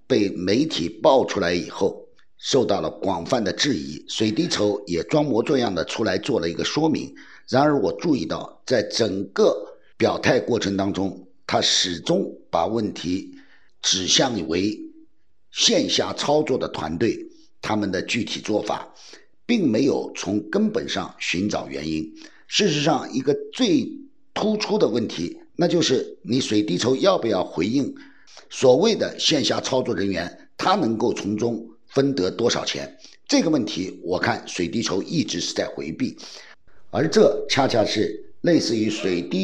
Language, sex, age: Chinese, male, 50-69